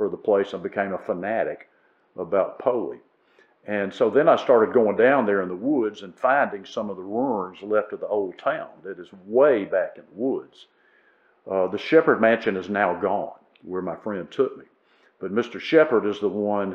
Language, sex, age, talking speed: English, male, 50-69, 200 wpm